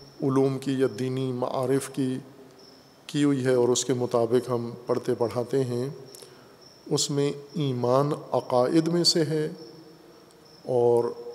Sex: male